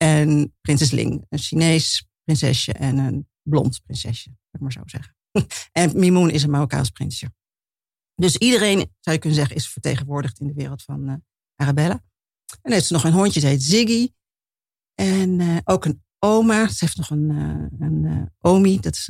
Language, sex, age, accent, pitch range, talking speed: Dutch, female, 50-69, Dutch, 140-175 Hz, 185 wpm